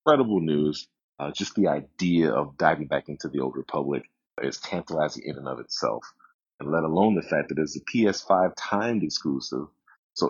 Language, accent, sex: English, American, male